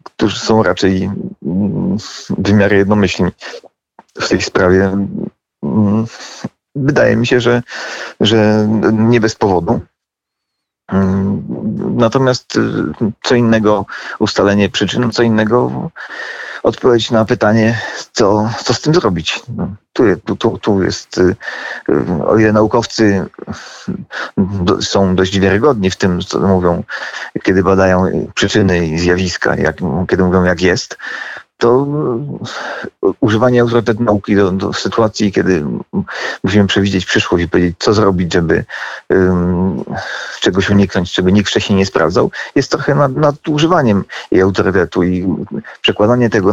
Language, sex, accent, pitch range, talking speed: Polish, male, native, 95-120 Hz, 115 wpm